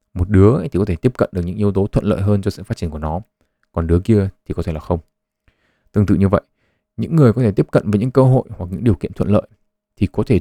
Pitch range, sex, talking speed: 90-115 Hz, male, 295 wpm